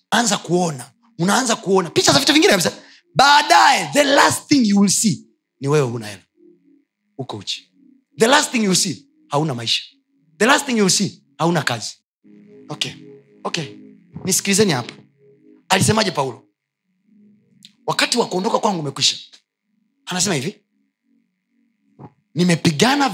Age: 30-49